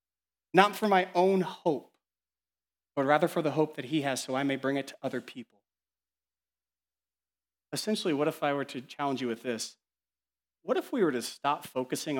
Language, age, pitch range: English, 30-49, 100-170 Hz